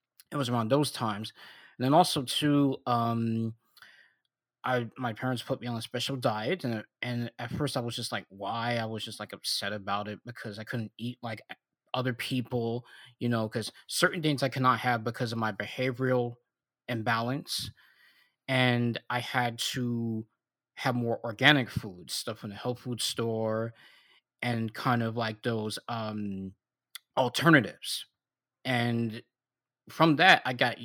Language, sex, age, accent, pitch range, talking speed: English, male, 20-39, American, 110-130 Hz, 160 wpm